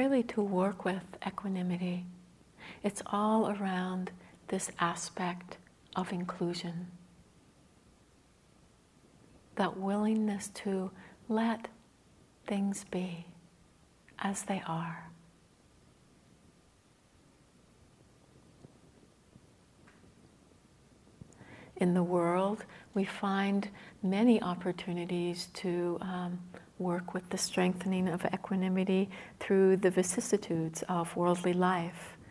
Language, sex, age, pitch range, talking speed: English, female, 60-79, 175-200 Hz, 80 wpm